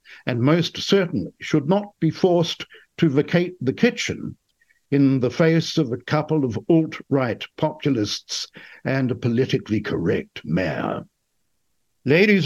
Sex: male